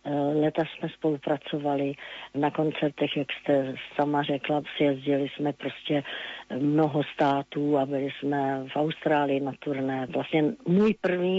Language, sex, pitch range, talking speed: Slovak, female, 140-155 Hz, 125 wpm